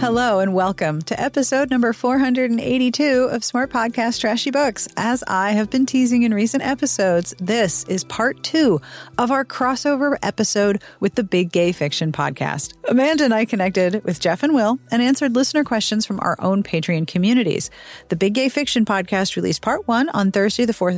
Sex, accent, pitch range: female, American, 180-255 Hz